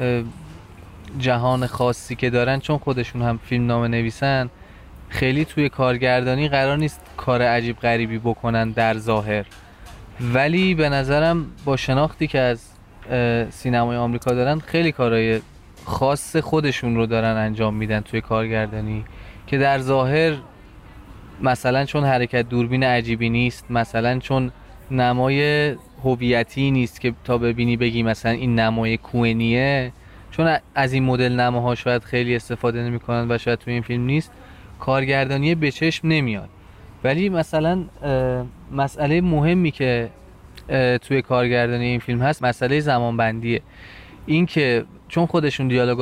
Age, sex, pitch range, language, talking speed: 20-39, male, 115-135 Hz, Persian, 130 wpm